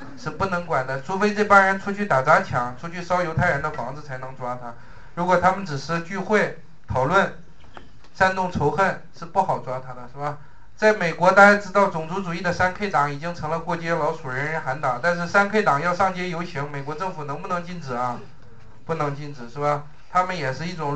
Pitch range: 145-180 Hz